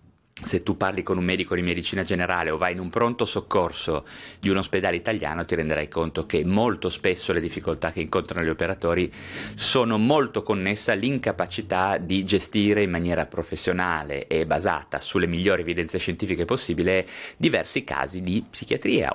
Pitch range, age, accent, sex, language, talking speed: 85-110 Hz, 30-49, native, male, Italian, 160 wpm